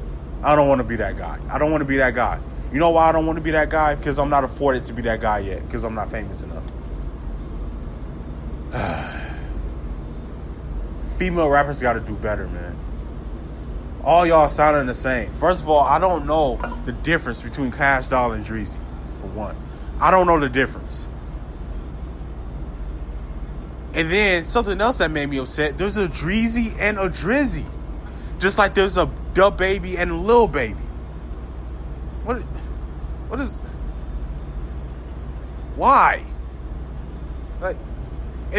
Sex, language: male, English